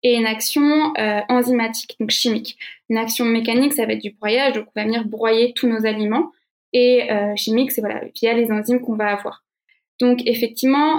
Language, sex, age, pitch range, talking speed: French, female, 20-39, 220-250 Hz, 195 wpm